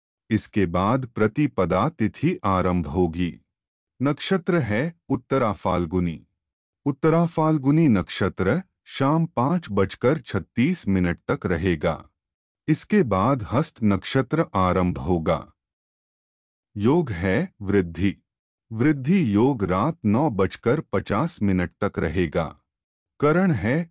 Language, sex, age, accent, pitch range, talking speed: Hindi, male, 30-49, native, 90-150 Hz, 95 wpm